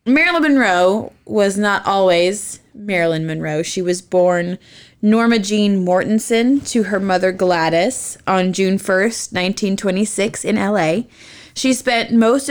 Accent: American